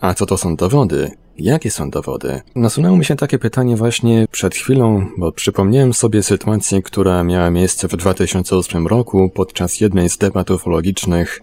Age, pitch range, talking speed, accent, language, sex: 20-39, 85-105 Hz, 165 wpm, native, Polish, male